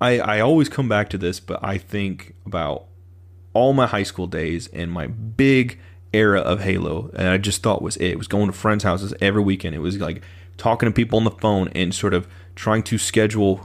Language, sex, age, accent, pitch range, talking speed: English, male, 30-49, American, 90-115 Hz, 225 wpm